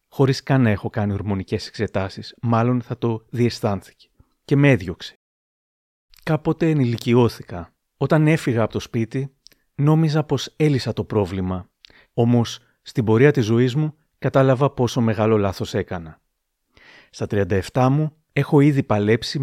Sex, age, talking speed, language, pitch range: male, 30-49, 130 wpm, Greek, 110-135 Hz